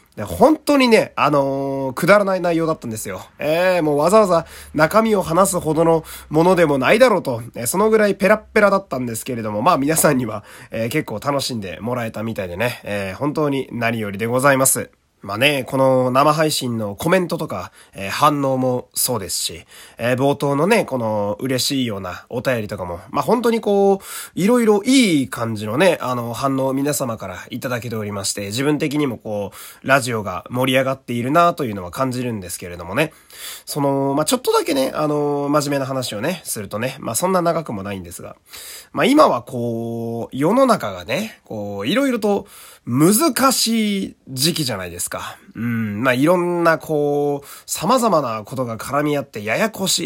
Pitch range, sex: 115-170 Hz, male